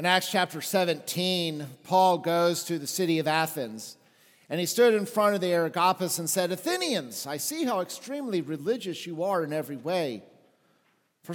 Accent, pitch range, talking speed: American, 165-215 Hz, 175 wpm